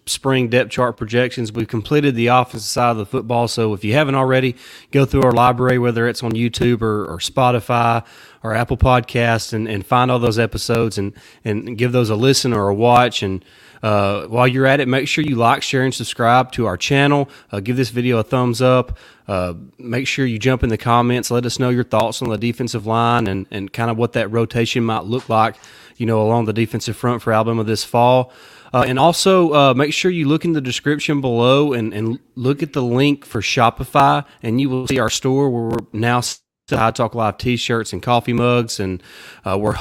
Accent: American